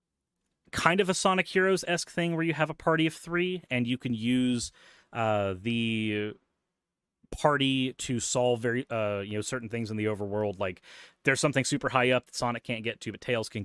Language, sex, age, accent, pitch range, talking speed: English, male, 30-49, American, 105-130 Hz, 200 wpm